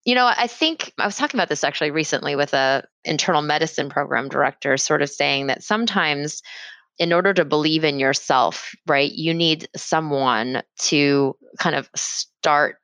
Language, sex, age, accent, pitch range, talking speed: English, female, 20-39, American, 150-200 Hz, 170 wpm